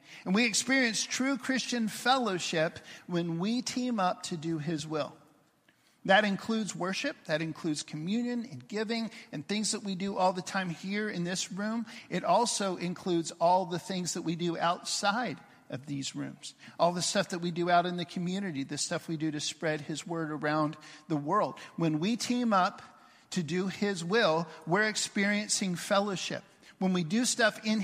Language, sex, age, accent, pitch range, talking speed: English, male, 50-69, American, 170-225 Hz, 180 wpm